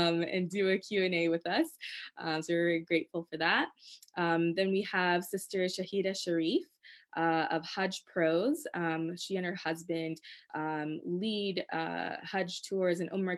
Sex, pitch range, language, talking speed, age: female, 165-185 Hz, English, 165 wpm, 20-39